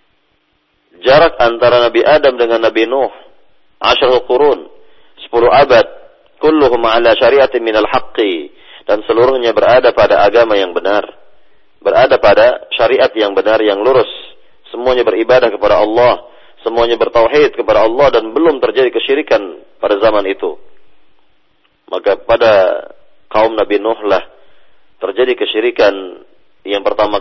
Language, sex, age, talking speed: Malay, male, 40-59, 120 wpm